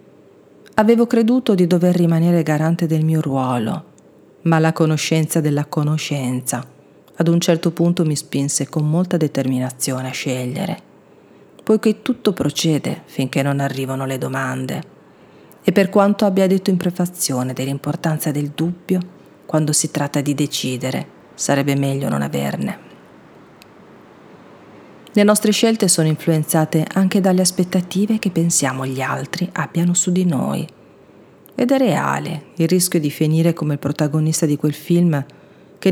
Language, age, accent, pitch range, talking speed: Italian, 40-59, native, 145-180 Hz, 135 wpm